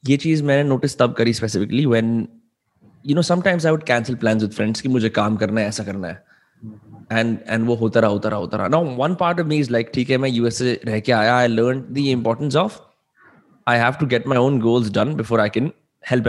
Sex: male